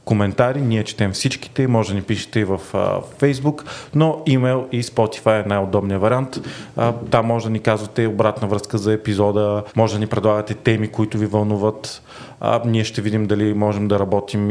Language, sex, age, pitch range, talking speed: Bulgarian, male, 30-49, 105-120 Hz, 190 wpm